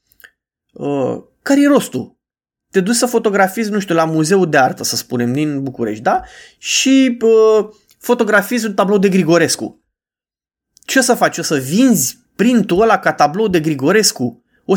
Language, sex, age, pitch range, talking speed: Romanian, male, 20-39, 160-225 Hz, 165 wpm